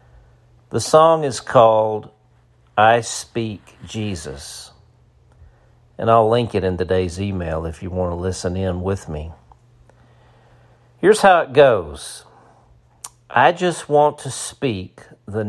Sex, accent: male, American